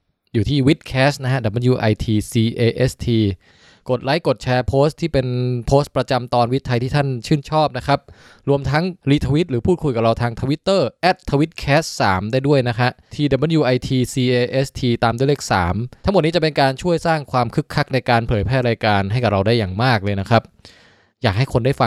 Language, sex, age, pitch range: Thai, male, 20-39, 115-145 Hz